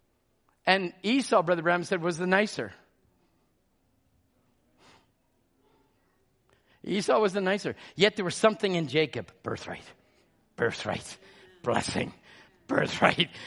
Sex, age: male, 50-69